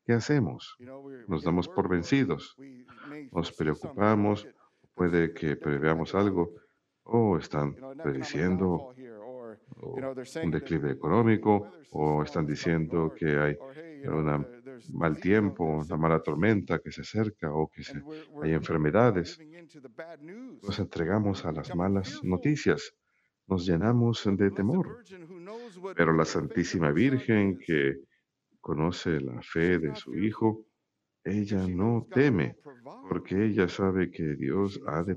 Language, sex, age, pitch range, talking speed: Spanish, male, 50-69, 80-120 Hz, 115 wpm